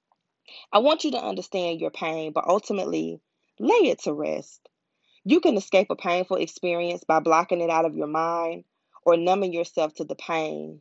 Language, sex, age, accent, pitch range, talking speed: English, female, 20-39, American, 160-200 Hz, 180 wpm